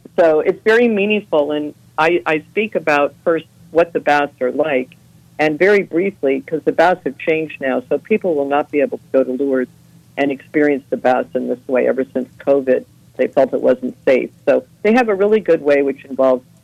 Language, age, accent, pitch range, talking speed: English, 50-69, American, 130-155 Hz, 210 wpm